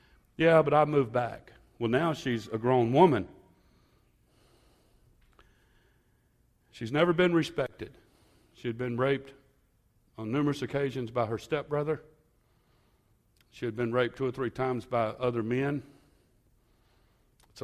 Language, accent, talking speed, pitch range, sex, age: English, American, 125 wpm, 105-125 Hz, male, 60-79